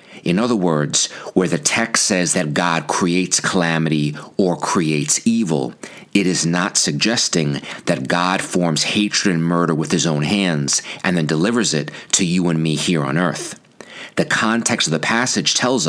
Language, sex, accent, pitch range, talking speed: English, male, American, 75-90 Hz, 170 wpm